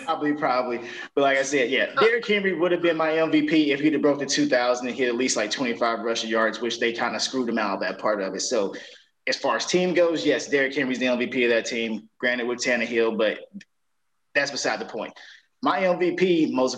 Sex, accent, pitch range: male, American, 125-180 Hz